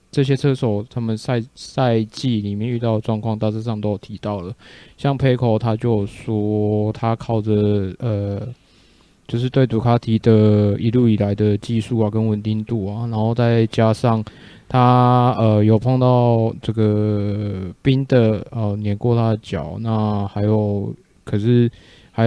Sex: male